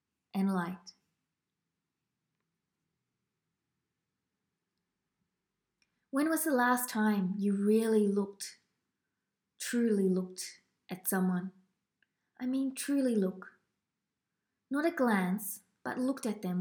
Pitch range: 190-230 Hz